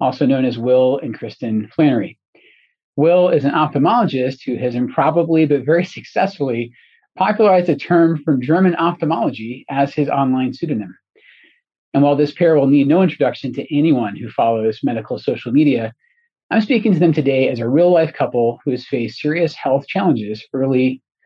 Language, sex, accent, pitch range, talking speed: English, male, American, 130-175 Hz, 165 wpm